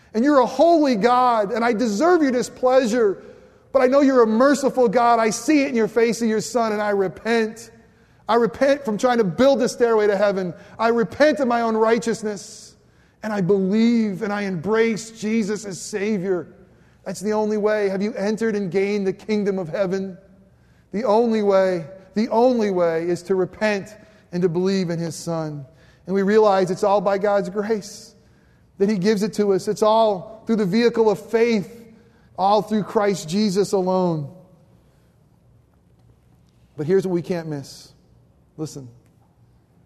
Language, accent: English, American